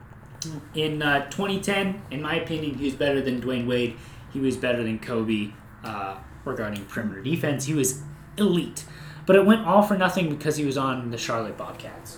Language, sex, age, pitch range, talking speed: English, male, 30-49, 125-165 Hz, 180 wpm